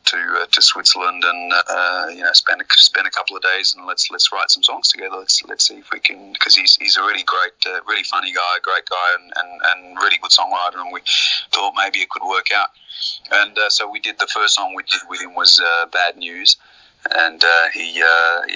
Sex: male